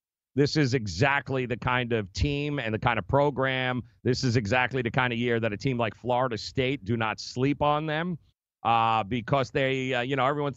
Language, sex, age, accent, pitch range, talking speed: English, male, 40-59, American, 120-145 Hz, 210 wpm